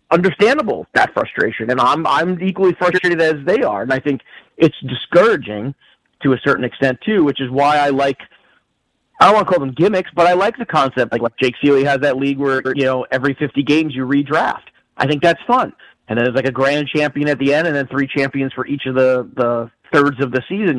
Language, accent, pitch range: English, American, 130-160 Hz